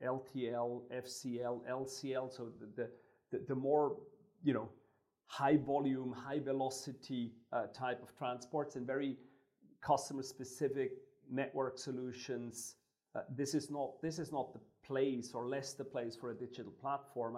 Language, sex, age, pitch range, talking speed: English, male, 40-59, 125-140 Hz, 140 wpm